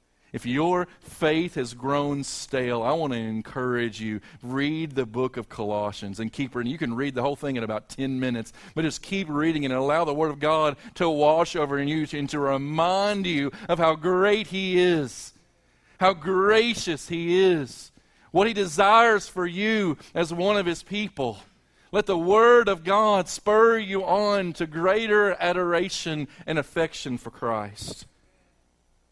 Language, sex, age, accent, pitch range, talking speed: English, male, 40-59, American, 100-155 Hz, 165 wpm